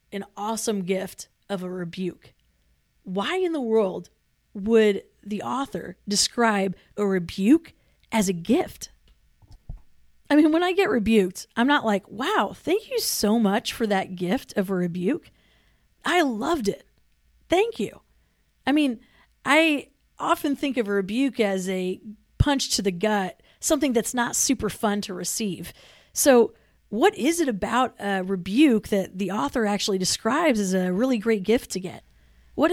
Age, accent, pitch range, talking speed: 40-59, American, 190-250 Hz, 155 wpm